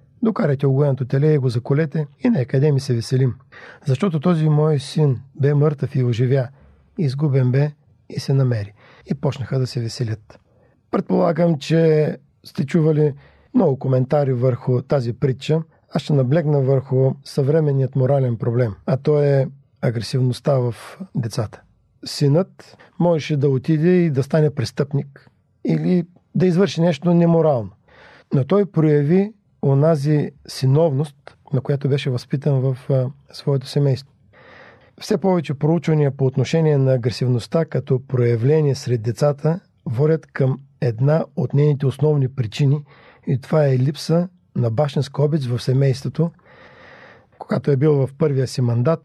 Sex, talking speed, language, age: male, 135 wpm, Bulgarian, 50-69